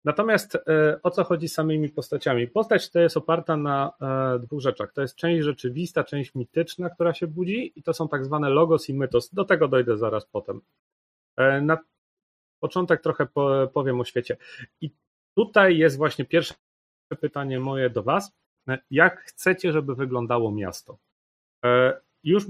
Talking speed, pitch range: 150 wpm, 130-165 Hz